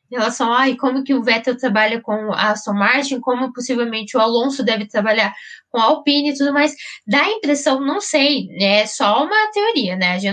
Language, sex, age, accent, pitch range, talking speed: Portuguese, female, 10-29, Brazilian, 235-300 Hz, 210 wpm